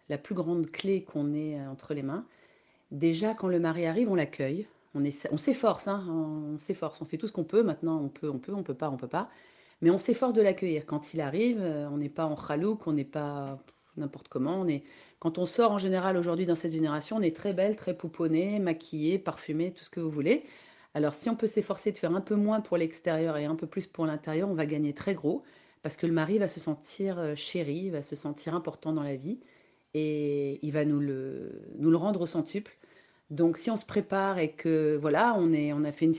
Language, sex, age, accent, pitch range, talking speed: French, female, 40-59, French, 150-190 Hz, 245 wpm